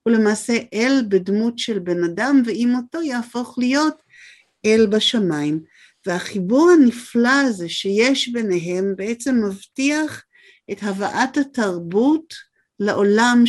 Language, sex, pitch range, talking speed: Hebrew, female, 210-255 Hz, 105 wpm